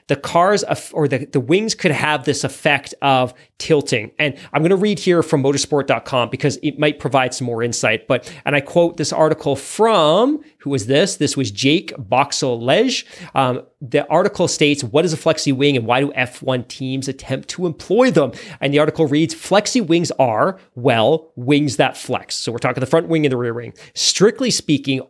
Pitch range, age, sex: 130-165 Hz, 30-49, male